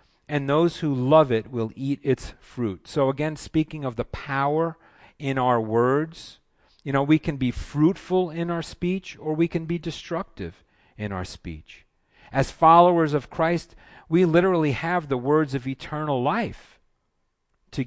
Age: 40-59